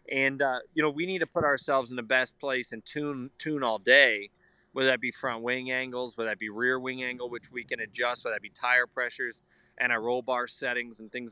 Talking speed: 245 wpm